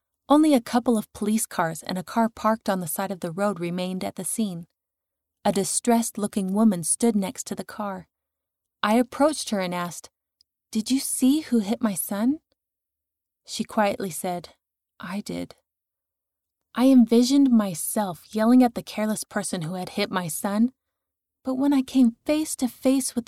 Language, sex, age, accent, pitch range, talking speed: English, female, 30-49, American, 170-235 Hz, 170 wpm